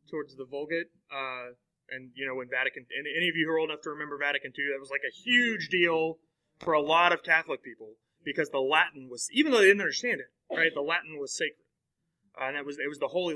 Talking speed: 250 wpm